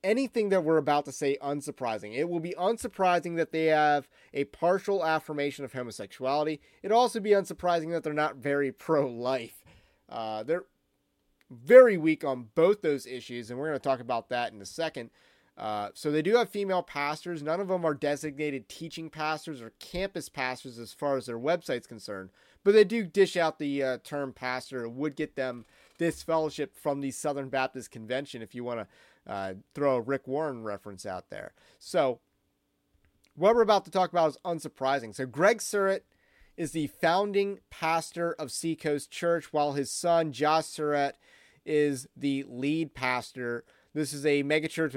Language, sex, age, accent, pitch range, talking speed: English, male, 30-49, American, 135-170 Hz, 175 wpm